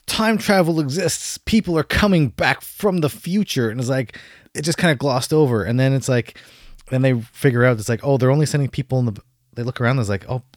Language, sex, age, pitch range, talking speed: English, male, 20-39, 105-130 Hz, 245 wpm